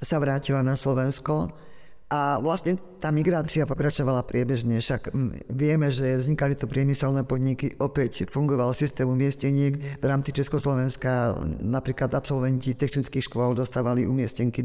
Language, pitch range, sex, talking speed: Slovak, 125-140 Hz, male, 125 wpm